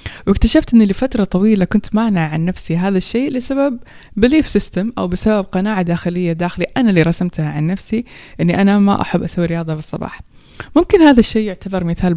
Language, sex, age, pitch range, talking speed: Persian, female, 20-39, 170-200 Hz, 175 wpm